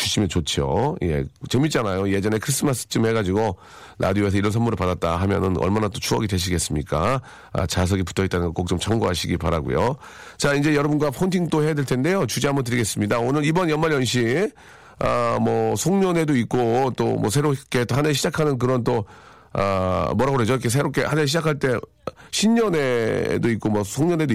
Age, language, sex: 40-59, Korean, male